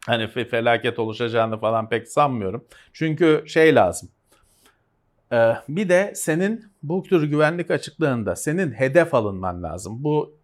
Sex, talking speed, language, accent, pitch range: male, 120 wpm, Turkish, native, 125-165 Hz